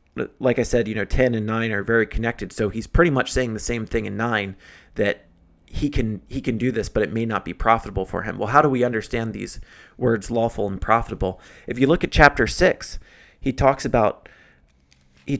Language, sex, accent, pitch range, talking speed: English, male, American, 100-125 Hz, 220 wpm